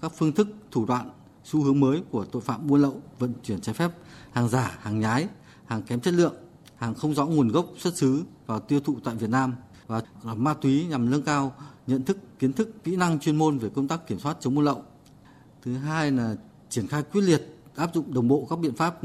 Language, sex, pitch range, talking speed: Vietnamese, male, 125-155 Hz, 235 wpm